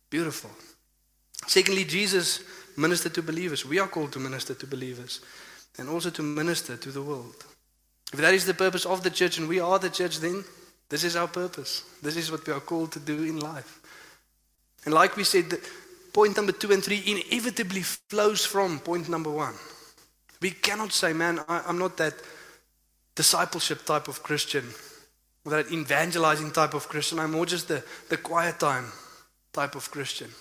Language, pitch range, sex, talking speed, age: English, 150-180 Hz, male, 180 wpm, 20-39